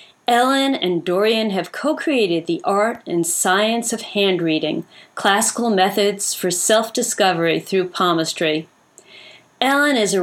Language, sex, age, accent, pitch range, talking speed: English, female, 40-59, American, 180-225 Hz, 125 wpm